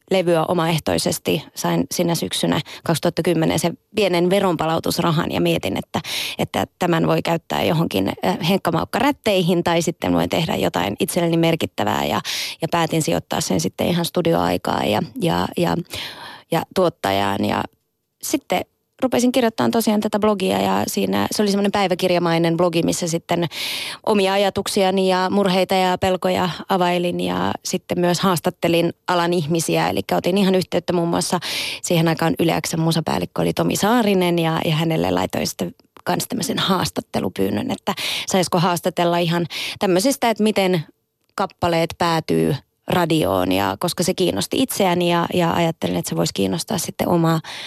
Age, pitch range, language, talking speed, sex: 20-39, 165-185 Hz, Finnish, 140 wpm, female